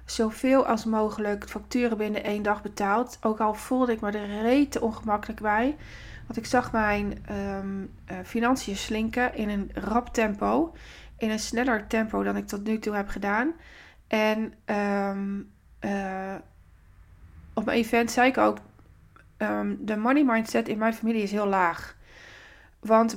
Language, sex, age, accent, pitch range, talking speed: Dutch, female, 20-39, Dutch, 205-235 Hz, 145 wpm